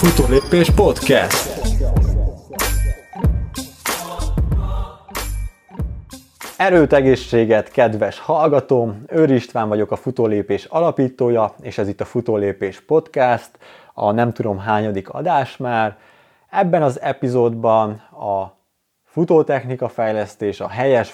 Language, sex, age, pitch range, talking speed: Hungarian, male, 30-49, 105-130 Hz, 90 wpm